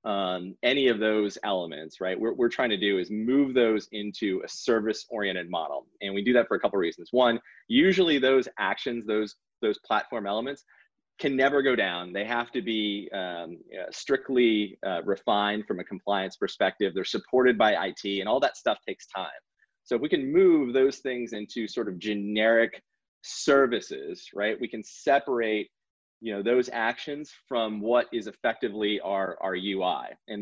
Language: English